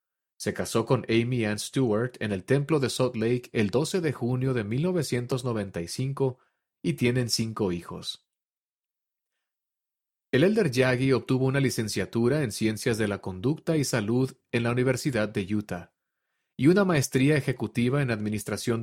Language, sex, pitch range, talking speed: Spanish, male, 110-135 Hz, 145 wpm